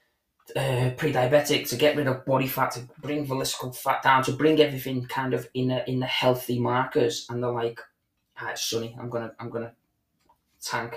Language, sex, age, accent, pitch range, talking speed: English, male, 20-39, British, 115-125 Hz, 190 wpm